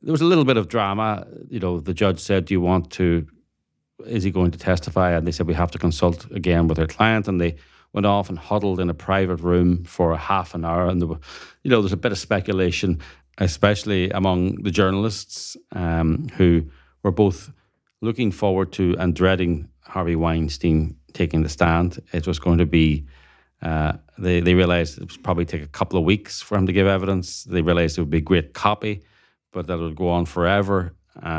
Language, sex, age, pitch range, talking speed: English, male, 30-49, 85-95 Hz, 215 wpm